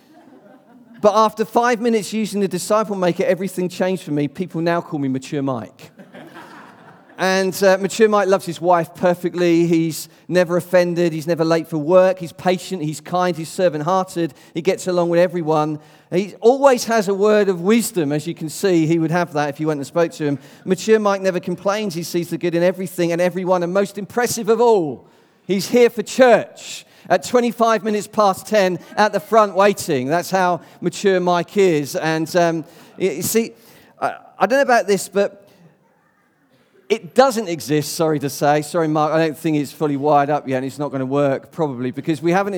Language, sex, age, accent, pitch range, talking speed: English, male, 40-59, British, 165-210 Hz, 195 wpm